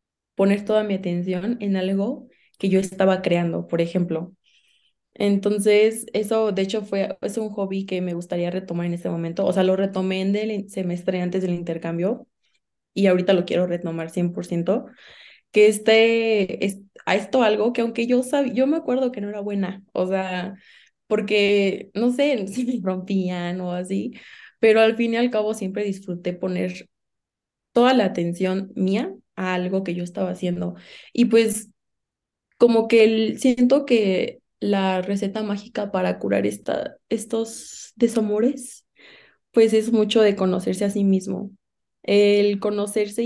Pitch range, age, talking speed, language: 185-215 Hz, 20-39, 160 wpm, Spanish